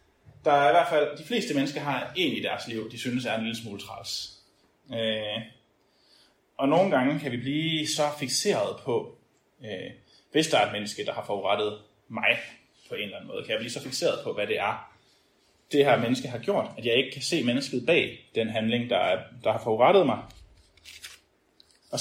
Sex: male